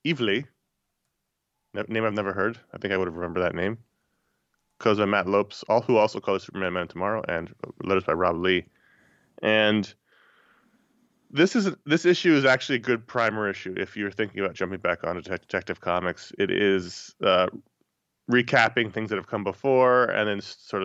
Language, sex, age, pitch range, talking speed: English, male, 20-39, 95-120 Hz, 175 wpm